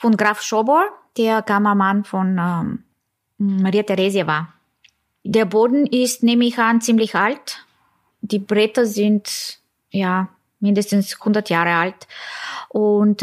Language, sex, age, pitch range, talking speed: German, female, 20-39, 200-240 Hz, 120 wpm